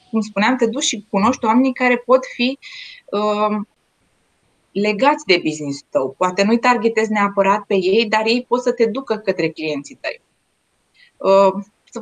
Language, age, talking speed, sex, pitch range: Romanian, 20-39, 160 wpm, female, 190-245 Hz